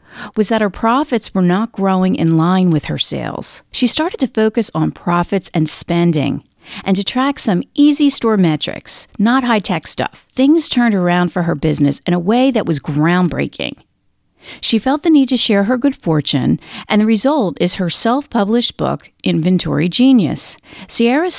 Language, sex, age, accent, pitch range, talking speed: English, female, 40-59, American, 175-235 Hz, 170 wpm